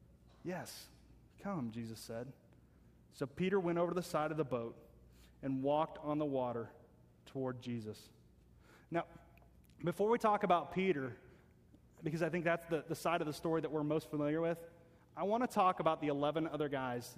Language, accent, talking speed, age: English, American, 180 wpm, 30-49